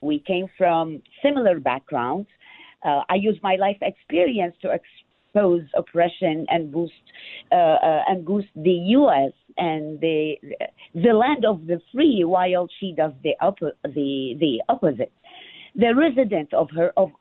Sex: female